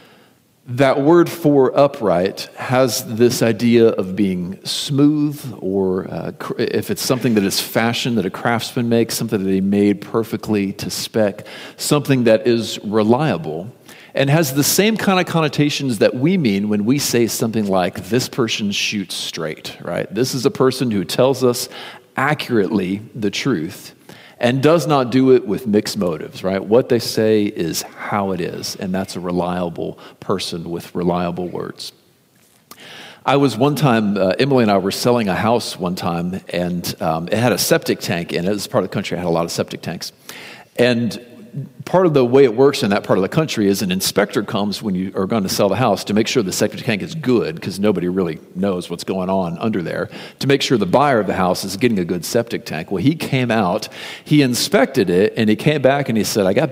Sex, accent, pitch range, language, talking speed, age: male, American, 100-135 Hz, English, 205 wpm, 40-59